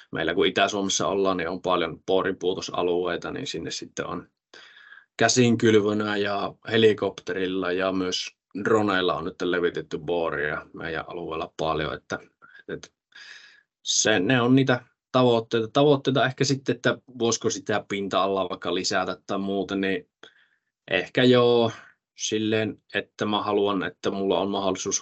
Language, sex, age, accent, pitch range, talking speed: Finnish, male, 20-39, native, 90-115 Hz, 135 wpm